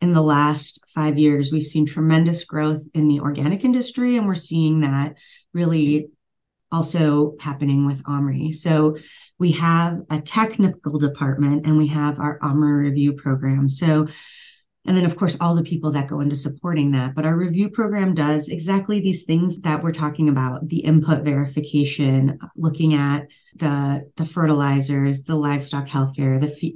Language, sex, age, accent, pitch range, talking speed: English, female, 30-49, American, 145-165 Hz, 165 wpm